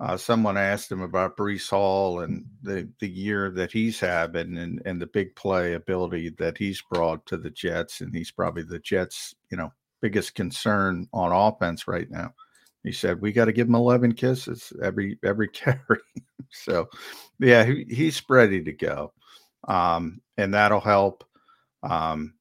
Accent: American